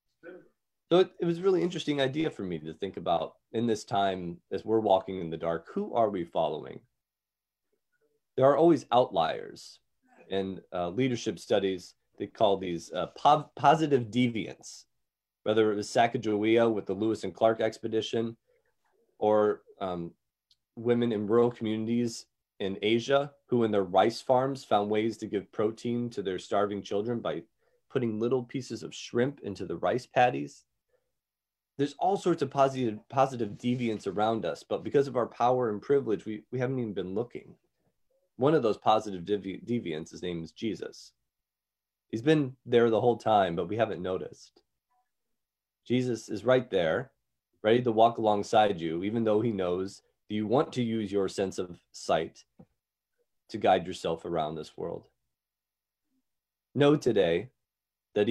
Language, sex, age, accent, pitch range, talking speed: English, male, 30-49, American, 105-130 Hz, 160 wpm